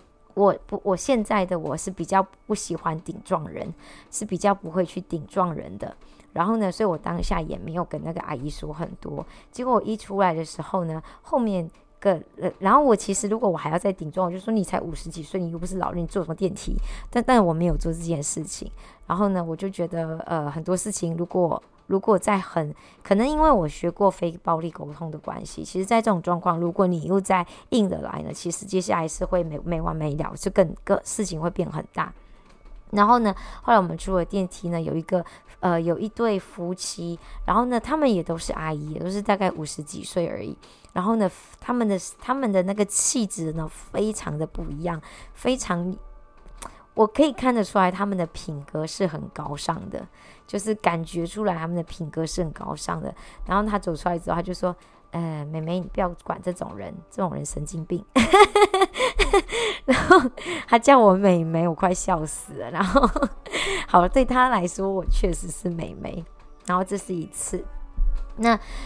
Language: Chinese